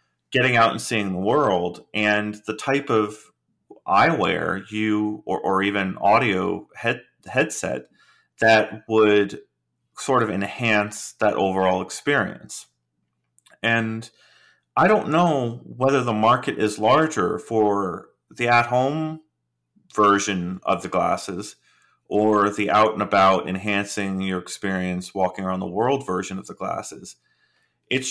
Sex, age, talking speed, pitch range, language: male, 30-49, 130 wpm, 90-110 Hz, English